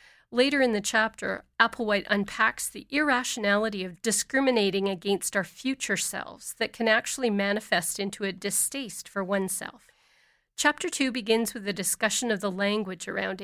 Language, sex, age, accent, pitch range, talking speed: English, female, 40-59, American, 200-250 Hz, 145 wpm